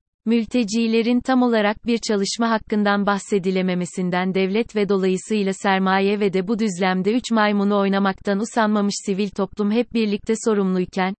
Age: 30-49